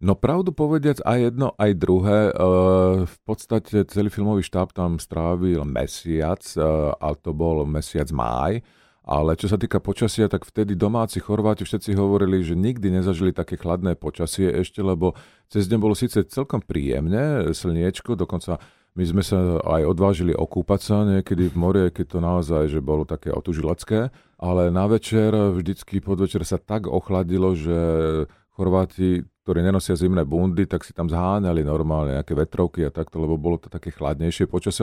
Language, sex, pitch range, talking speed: Slovak, male, 85-105 Hz, 160 wpm